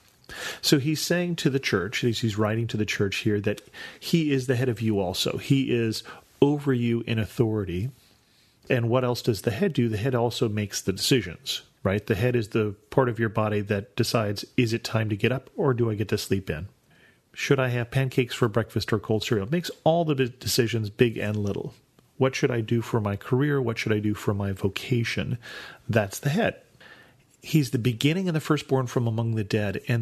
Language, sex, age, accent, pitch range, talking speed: English, male, 40-59, American, 105-130 Hz, 215 wpm